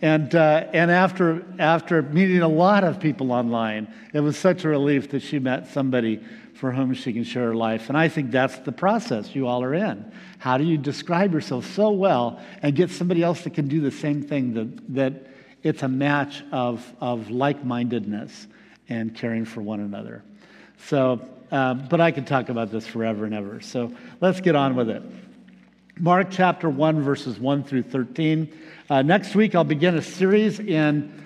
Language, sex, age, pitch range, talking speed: English, male, 50-69, 125-170 Hz, 190 wpm